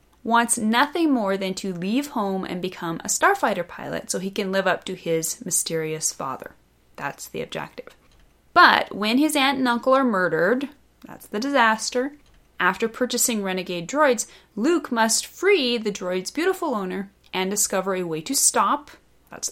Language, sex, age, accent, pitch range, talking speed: English, female, 30-49, American, 165-250 Hz, 165 wpm